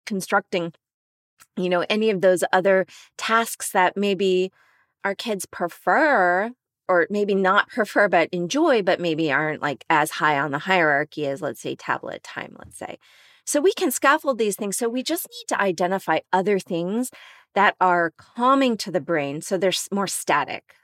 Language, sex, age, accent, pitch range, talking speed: English, female, 30-49, American, 170-210 Hz, 170 wpm